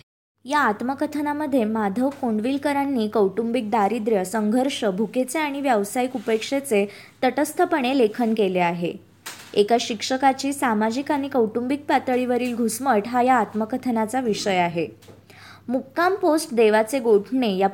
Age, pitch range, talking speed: 20-39, 210-265 Hz, 110 wpm